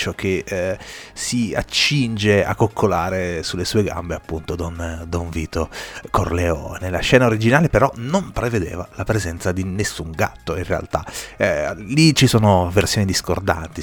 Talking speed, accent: 145 wpm, native